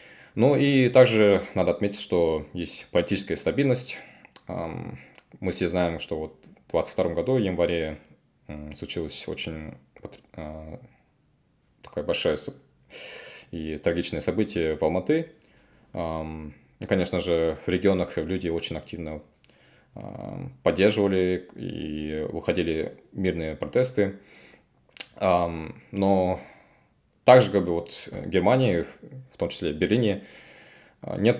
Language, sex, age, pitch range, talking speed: Russian, male, 20-39, 80-100 Hz, 105 wpm